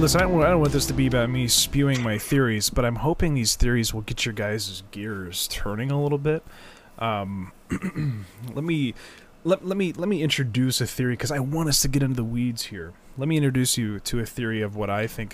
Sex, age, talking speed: male, 20-39, 230 wpm